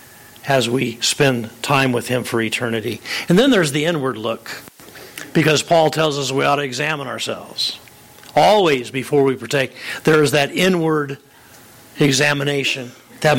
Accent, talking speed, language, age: American, 150 wpm, English, 50-69